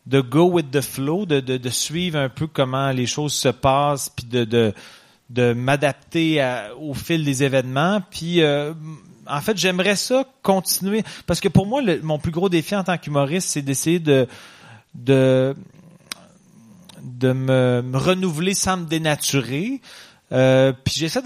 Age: 30-49